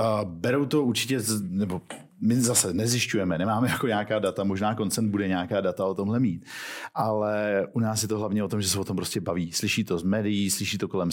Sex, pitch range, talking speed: male, 100-110 Hz, 215 wpm